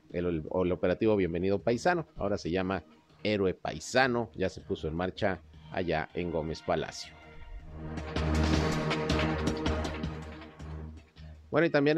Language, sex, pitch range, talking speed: Spanish, male, 80-105 Hz, 115 wpm